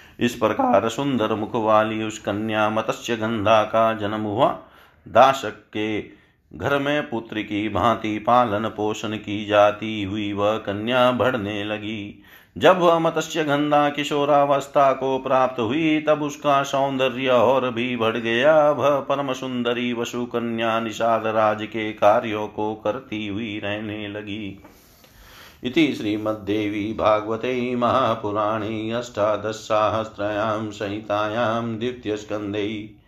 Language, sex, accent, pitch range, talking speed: Hindi, male, native, 105-125 Hz, 115 wpm